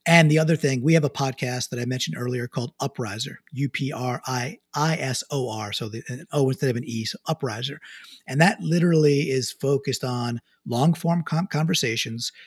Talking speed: 195 wpm